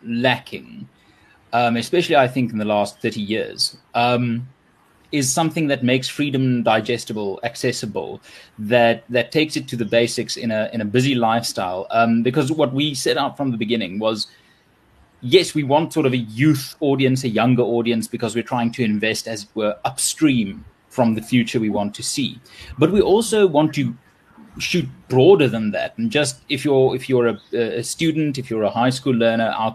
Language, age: English, 30-49